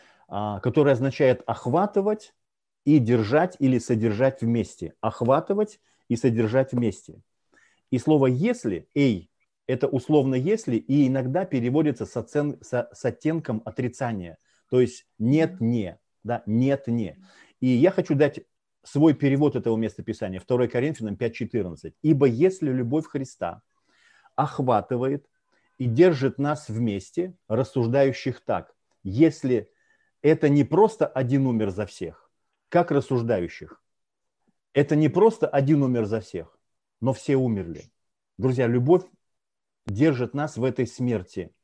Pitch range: 120-155 Hz